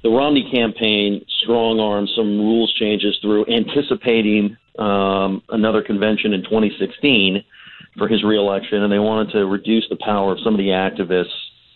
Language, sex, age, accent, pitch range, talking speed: English, male, 50-69, American, 100-115 Hz, 155 wpm